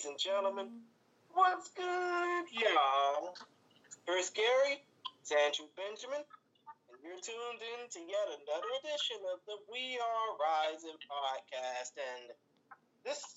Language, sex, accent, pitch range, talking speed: English, male, American, 170-250 Hz, 115 wpm